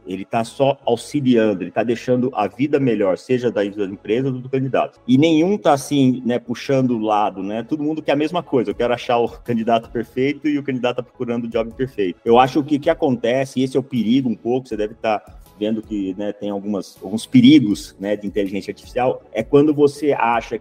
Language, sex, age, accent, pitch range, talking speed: Portuguese, male, 40-59, Brazilian, 105-135 Hz, 215 wpm